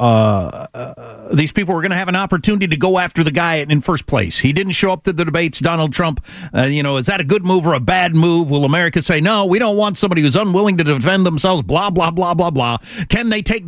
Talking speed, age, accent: 265 wpm, 50-69, American